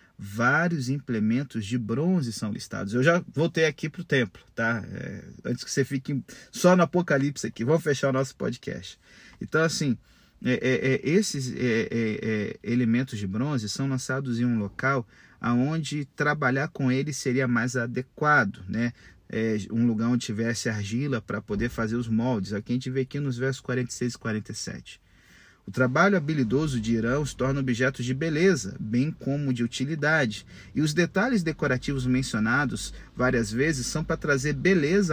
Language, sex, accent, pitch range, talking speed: Portuguese, male, Brazilian, 115-150 Hz, 155 wpm